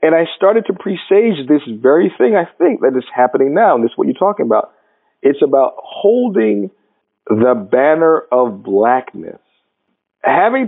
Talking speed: 165 wpm